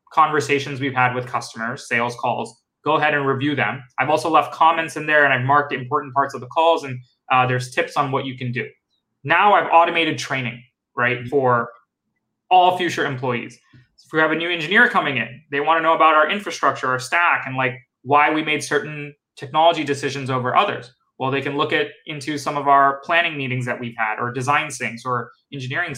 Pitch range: 130-155 Hz